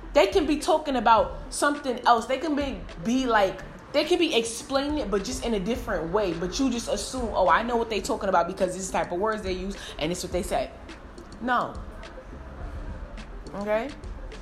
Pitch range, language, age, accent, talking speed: 150-235 Hz, English, 20-39, American, 200 wpm